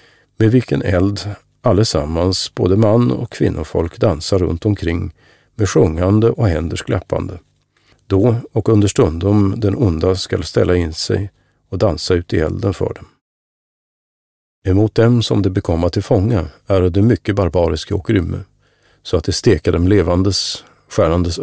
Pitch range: 90-105 Hz